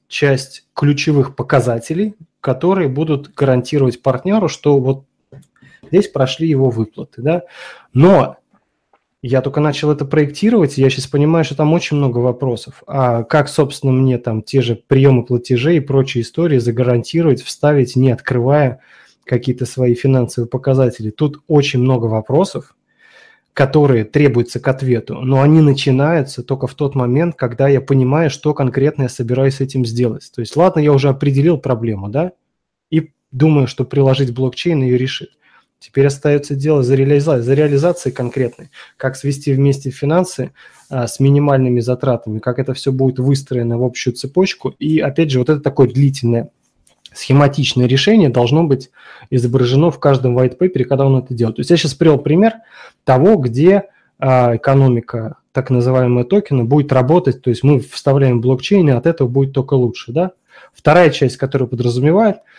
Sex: male